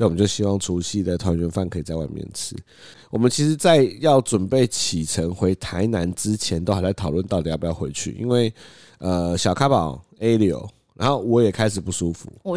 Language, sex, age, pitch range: Chinese, male, 30-49, 90-115 Hz